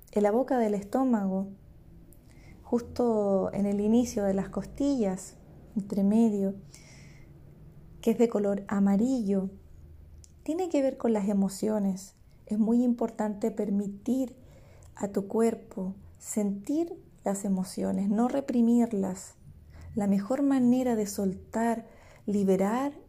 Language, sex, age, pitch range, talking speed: Spanish, female, 30-49, 185-230 Hz, 110 wpm